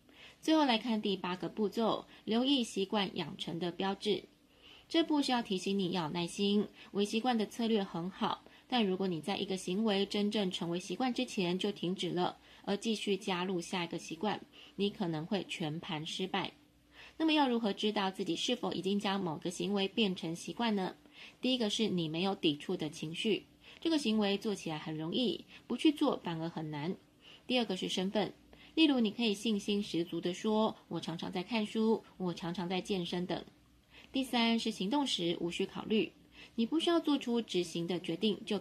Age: 20-39